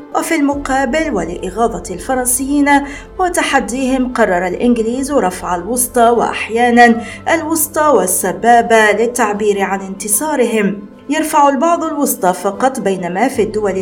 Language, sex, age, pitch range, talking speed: Arabic, female, 40-59, 205-275 Hz, 95 wpm